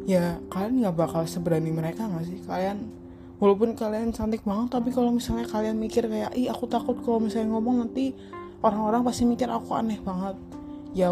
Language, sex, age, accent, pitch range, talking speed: Indonesian, female, 20-39, native, 165-220 Hz, 180 wpm